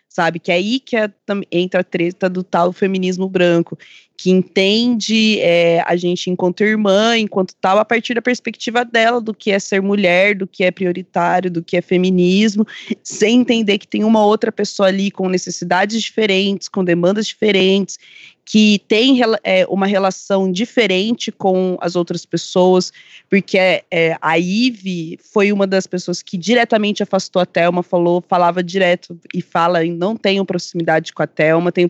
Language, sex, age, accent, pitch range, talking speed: Portuguese, female, 20-39, Brazilian, 180-215 Hz, 160 wpm